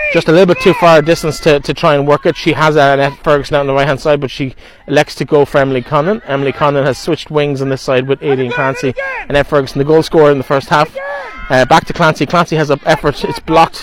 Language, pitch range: English, 120-150 Hz